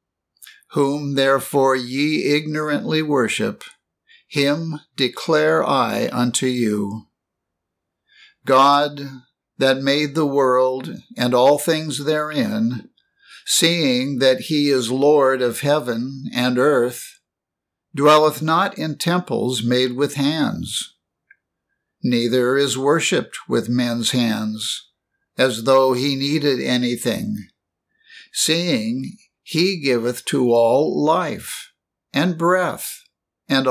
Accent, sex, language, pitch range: American, male, English, 125-160 Hz